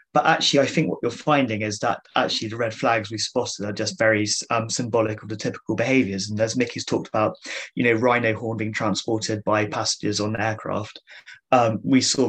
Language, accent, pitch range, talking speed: English, British, 110-120 Hz, 210 wpm